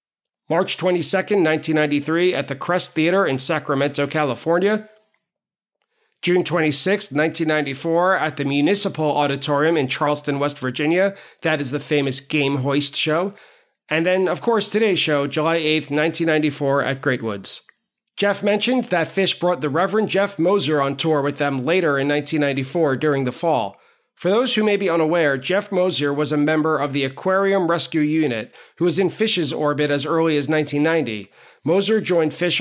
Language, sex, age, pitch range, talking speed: English, male, 40-59, 145-185 Hz, 160 wpm